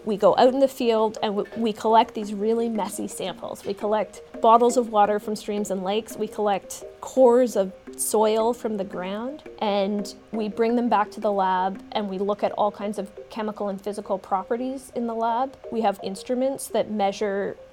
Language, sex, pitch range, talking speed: English, female, 195-225 Hz, 195 wpm